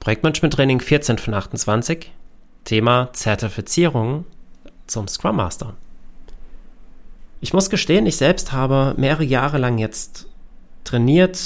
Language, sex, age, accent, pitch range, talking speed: German, male, 30-49, German, 115-145 Hz, 105 wpm